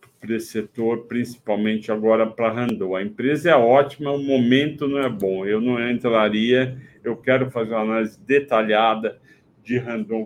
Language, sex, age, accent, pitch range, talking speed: Portuguese, male, 60-79, Brazilian, 110-135 Hz, 160 wpm